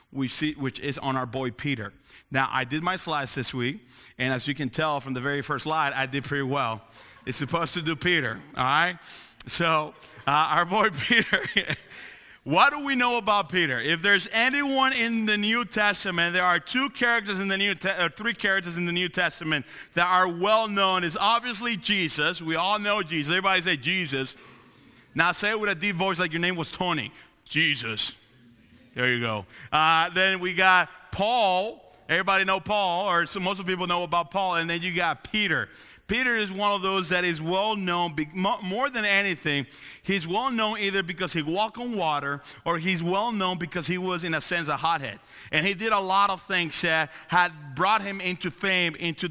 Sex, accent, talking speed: male, American, 195 wpm